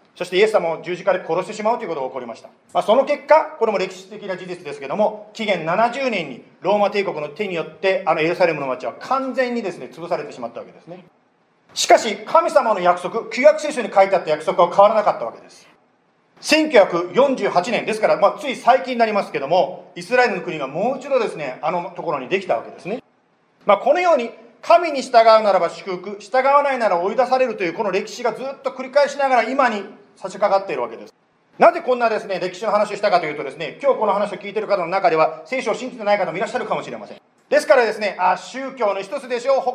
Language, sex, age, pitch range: Japanese, male, 40-59, 185-260 Hz